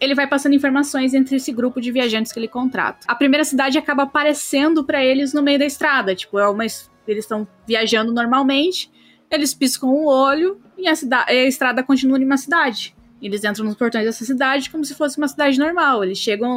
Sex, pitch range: female, 210-270 Hz